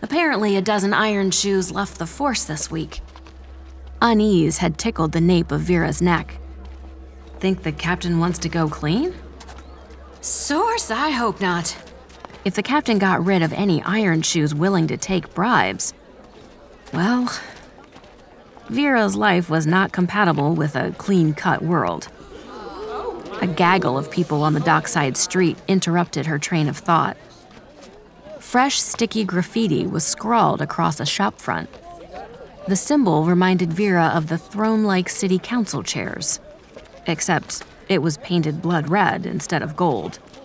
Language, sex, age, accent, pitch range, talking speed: English, female, 30-49, American, 160-210 Hz, 140 wpm